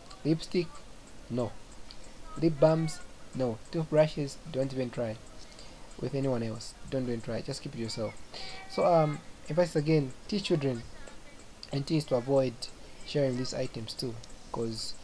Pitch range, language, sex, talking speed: 120-160 Hz, English, male, 135 wpm